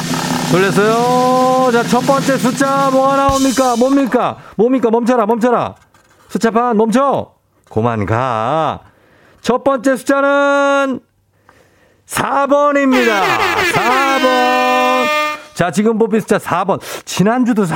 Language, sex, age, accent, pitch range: Korean, male, 40-59, native, 125-205 Hz